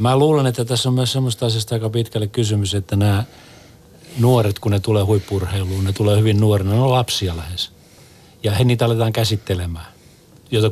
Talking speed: 175 wpm